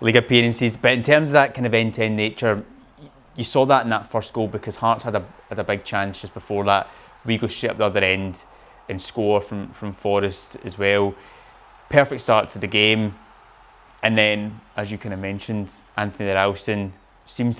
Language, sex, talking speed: English, male, 200 wpm